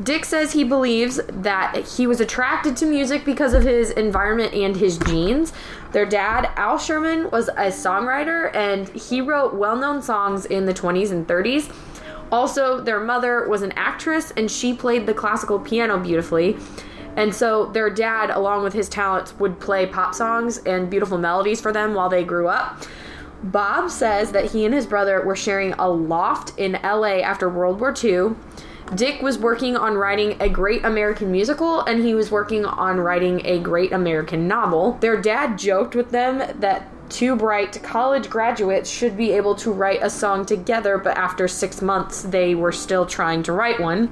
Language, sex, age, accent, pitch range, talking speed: English, female, 10-29, American, 195-245 Hz, 180 wpm